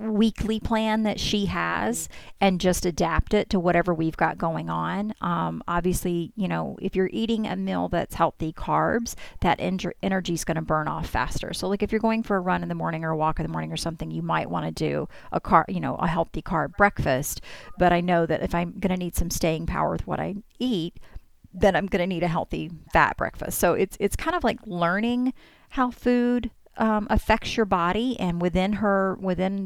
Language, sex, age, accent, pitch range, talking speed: English, female, 40-59, American, 165-205 Hz, 220 wpm